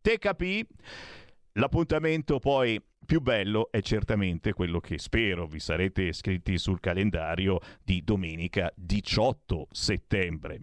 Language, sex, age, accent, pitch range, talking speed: Italian, male, 50-69, native, 105-165 Hz, 105 wpm